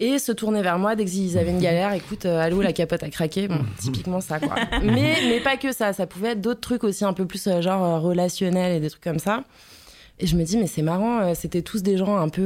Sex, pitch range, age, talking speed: female, 175-210 Hz, 20-39, 280 wpm